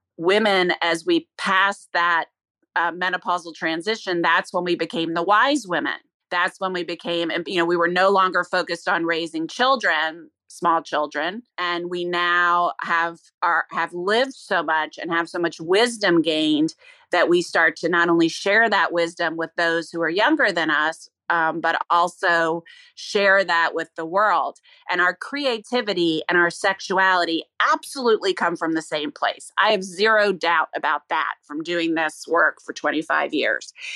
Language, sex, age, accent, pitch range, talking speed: English, female, 30-49, American, 165-200 Hz, 170 wpm